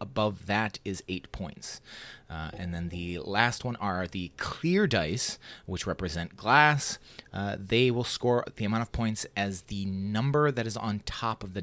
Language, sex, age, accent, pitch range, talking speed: English, male, 30-49, American, 95-130 Hz, 180 wpm